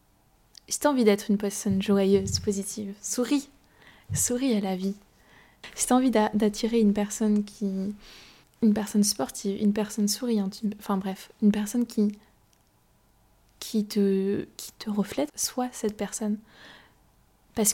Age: 20-39